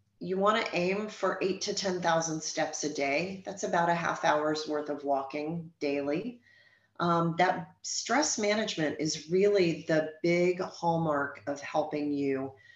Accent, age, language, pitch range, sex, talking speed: American, 40-59, English, 145-180 Hz, female, 150 wpm